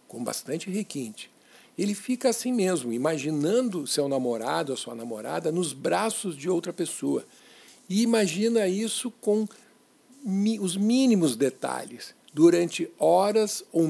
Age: 60-79